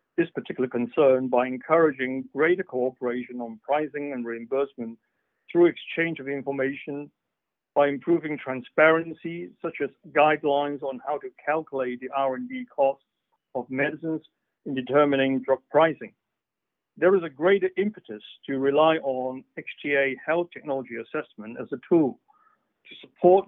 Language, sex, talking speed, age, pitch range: English, male, 130 wpm, 50-69, 130-160 Hz